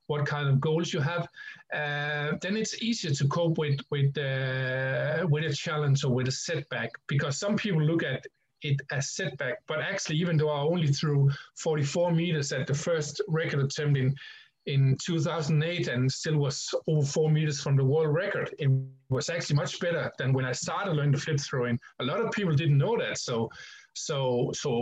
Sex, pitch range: male, 135-170 Hz